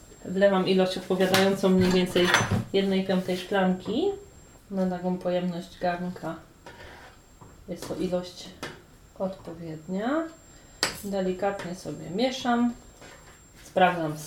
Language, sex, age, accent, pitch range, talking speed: Polish, female, 30-49, native, 165-195 Hz, 85 wpm